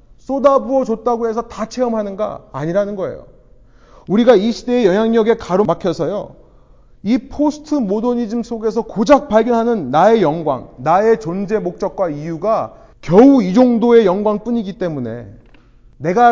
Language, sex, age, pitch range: Korean, male, 30-49, 185-240 Hz